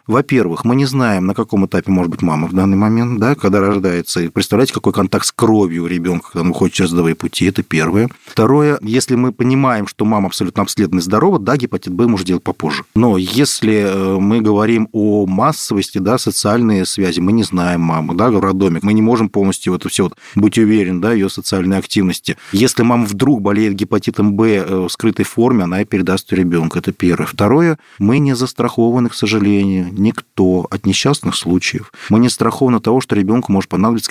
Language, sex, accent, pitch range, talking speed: Russian, male, native, 95-115 Hz, 190 wpm